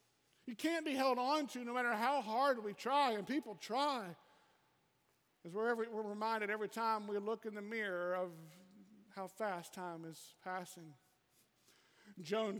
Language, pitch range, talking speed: English, 185-235 Hz, 160 wpm